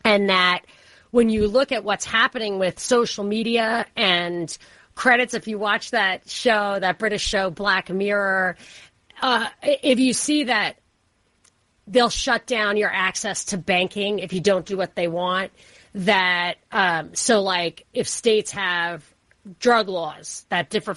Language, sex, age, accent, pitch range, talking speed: English, female, 30-49, American, 185-235 Hz, 150 wpm